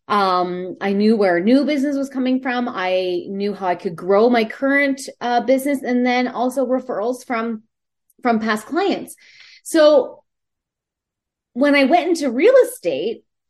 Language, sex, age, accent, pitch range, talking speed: English, female, 30-49, American, 190-270 Hz, 150 wpm